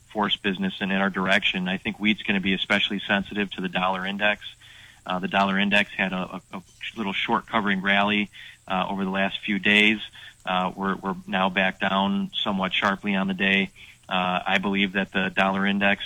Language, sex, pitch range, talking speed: English, male, 95-105 Hz, 200 wpm